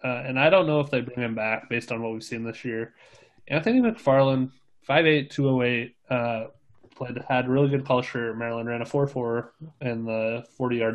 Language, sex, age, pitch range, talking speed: English, male, 20-39, 110-130 Hz, 185 wpm